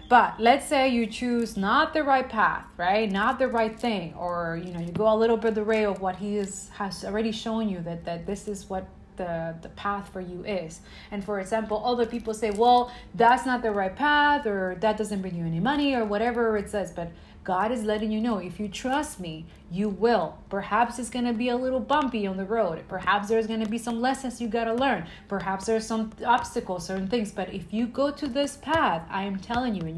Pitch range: 190-235 Hz